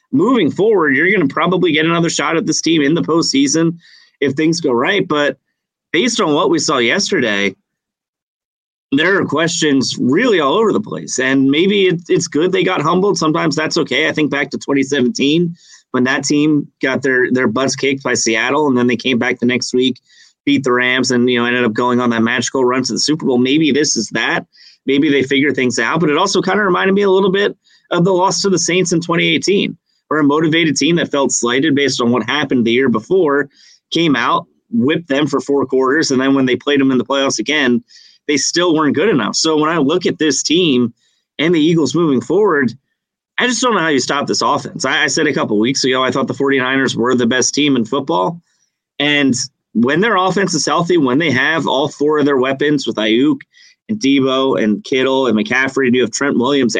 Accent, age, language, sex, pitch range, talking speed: American, 30-49, English, male, 125-165 Hz, 225 wpm